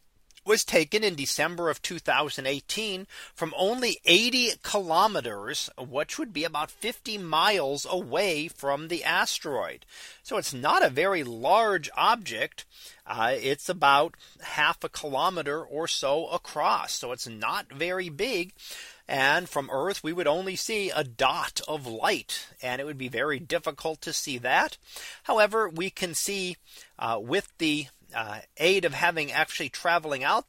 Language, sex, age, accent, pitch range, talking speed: English, male, 40-59, American, 150-190 Hz, 150 wpm